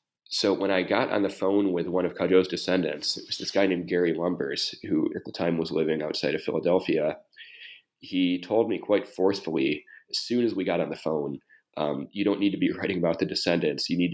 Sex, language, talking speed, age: male, English, 225 wpm, 30-49